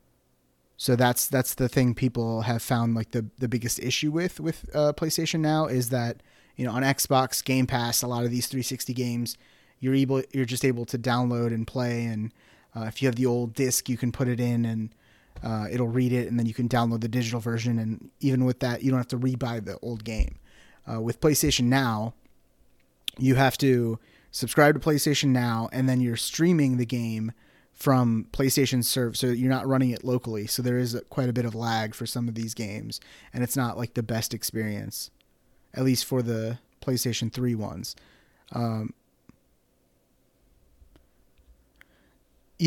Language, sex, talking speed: English, male, 185 wpm